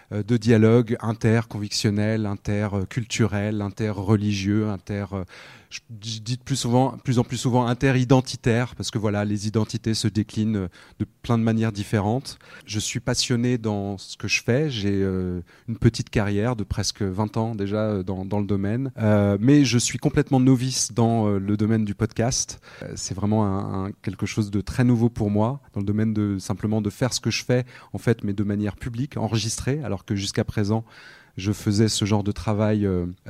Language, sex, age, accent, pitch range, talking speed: French, male, 30-49, French, 105-125 Hz, 180 wpm